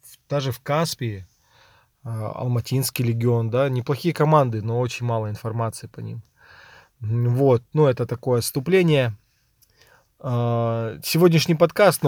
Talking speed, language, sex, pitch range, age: 110 wpm, Russian, male, 115-135 Hz, 20-39